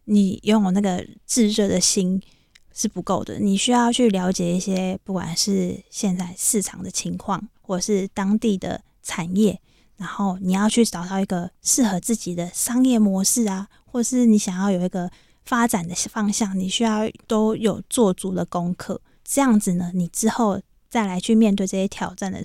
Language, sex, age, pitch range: Chinese, female, 20-39, 185-215 Hz